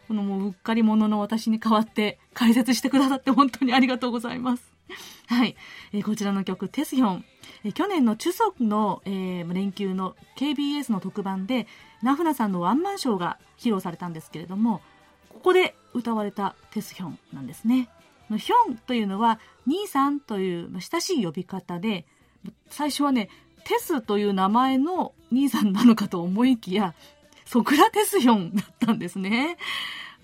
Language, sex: Japanese, female